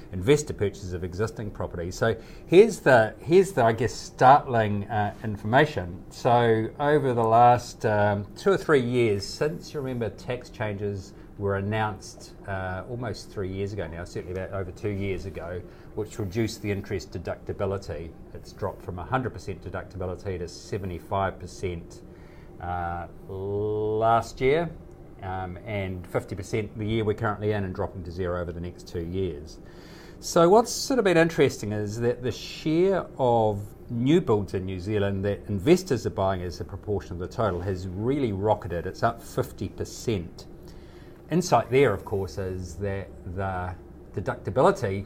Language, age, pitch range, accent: English, 30-49, 95-115 Hz, Australian